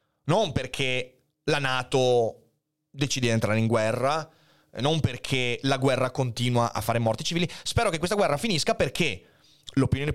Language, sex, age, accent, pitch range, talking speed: Italian, male, 30-49, native, 115-150 Hz, 150 wpm